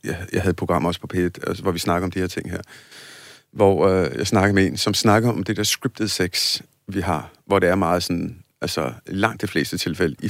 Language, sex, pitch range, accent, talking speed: Danish, male, 90-115 Hz, native, 240 wpm